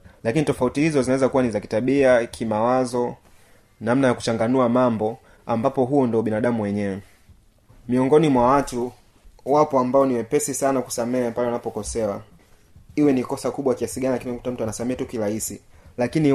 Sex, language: male, Swahili